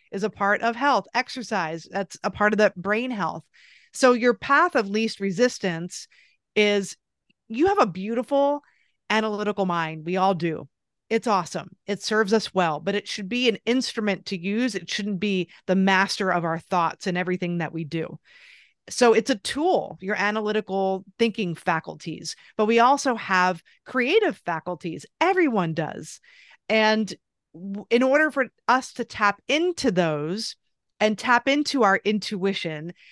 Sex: female